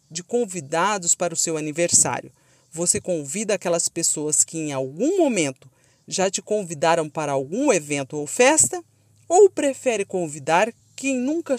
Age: 40-59